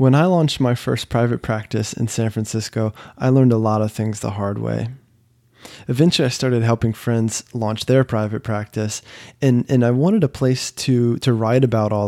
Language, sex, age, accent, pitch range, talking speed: English, male, 20-39, American, 110-130 Hz, 195 wpm